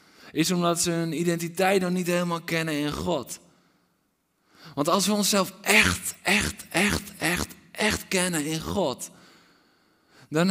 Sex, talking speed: male, 135 wpm